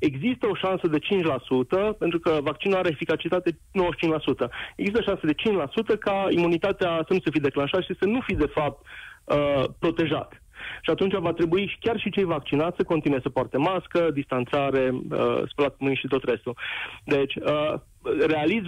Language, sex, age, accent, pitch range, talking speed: Romanian, male, 30-49, native, 145-185 Hz, 160 wpm